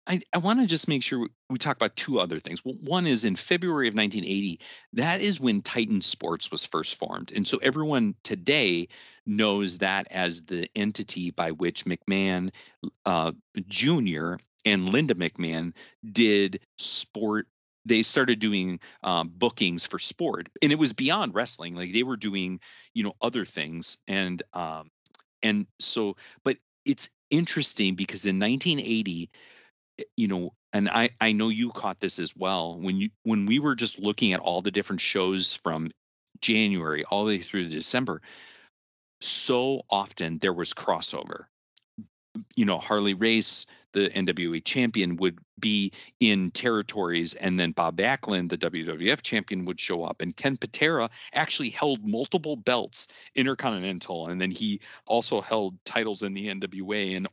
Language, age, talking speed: English, 40-59, 160 wpm